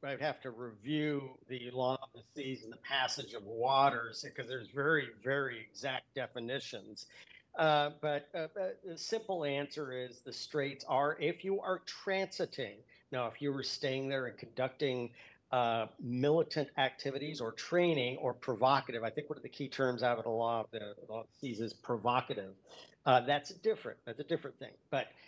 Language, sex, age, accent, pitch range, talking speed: English, male, 50-69, American, 125-150 Hz, 185 wpm